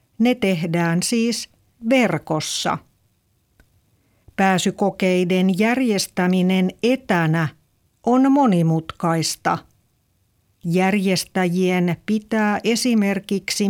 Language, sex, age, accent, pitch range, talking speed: Finnish, female, 60-79, native, 155-225 Hz, 55 wpm